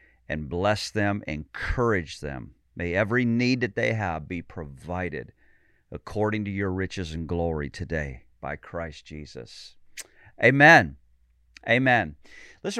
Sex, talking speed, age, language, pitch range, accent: male, 120 wpm, 40-59, English, 90-130 Hz, American